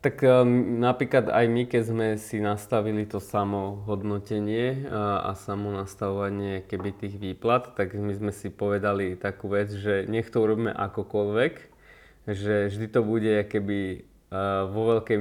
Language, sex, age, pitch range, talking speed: Slovak, male, 20-39, 95-110 Hz, 140 wpm